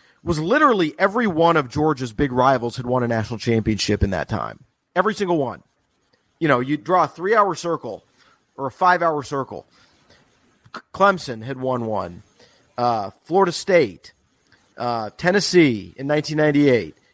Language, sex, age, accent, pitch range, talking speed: English, male, 40-59, American, 135-195 Hz, 145 wpm